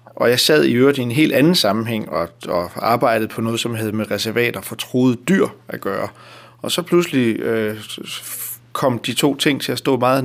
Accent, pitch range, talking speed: native, 115-140 Hz, 210 wpm